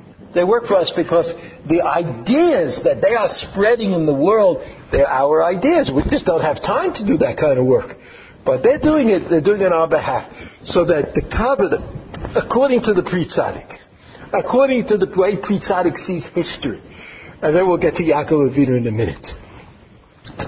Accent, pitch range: American, 125-180 Hz